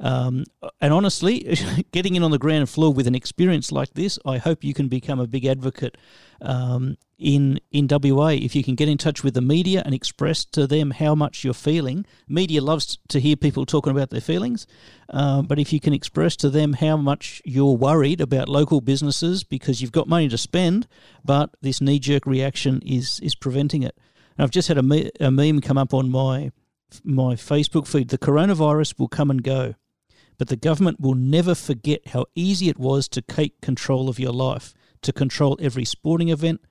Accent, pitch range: Australian, 130-155 Hz